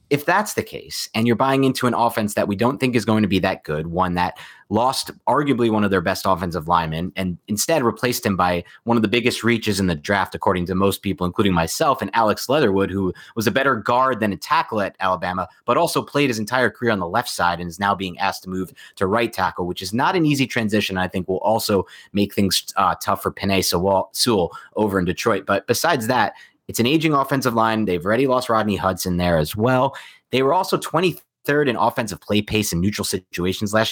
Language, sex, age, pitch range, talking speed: English, male, 30-49, 95-120 Hz, 230 wpm